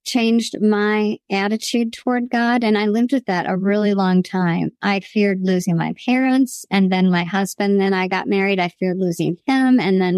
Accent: American